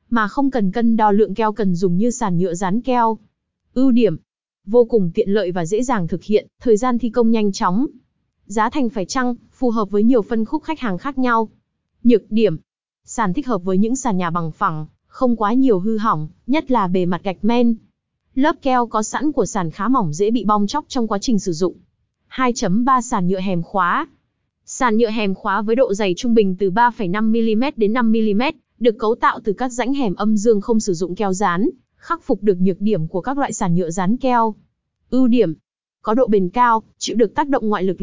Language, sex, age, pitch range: Vietnamese, female, 20-39, 195-245 Hz